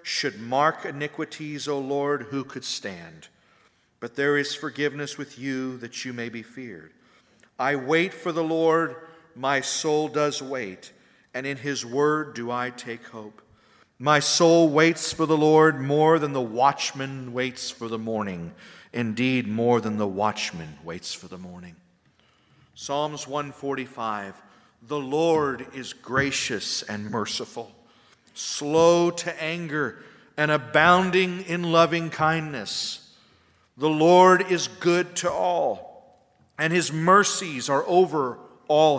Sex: male